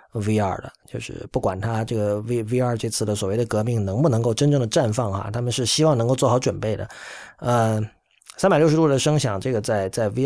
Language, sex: Chinese, male